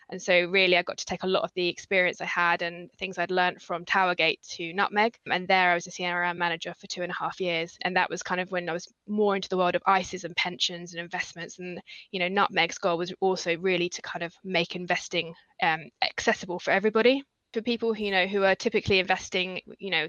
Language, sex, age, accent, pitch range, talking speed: English, female, 20-39, British, 175-195 Hz, 240 wpm